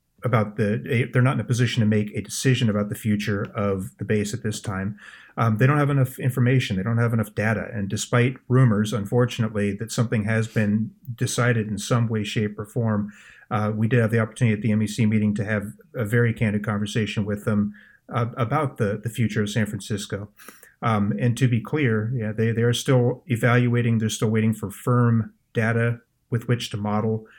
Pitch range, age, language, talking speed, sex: 105-120 Hz, 30-49, English, 200 wpm, male